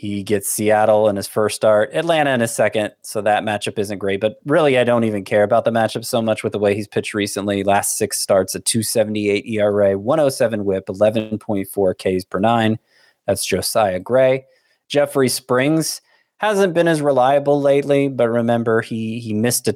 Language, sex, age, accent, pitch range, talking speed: English, male, 20-39, American, 100-125 Hz, 180 wpm